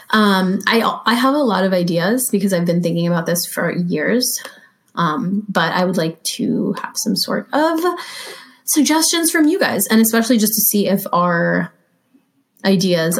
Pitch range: 180-240 Hz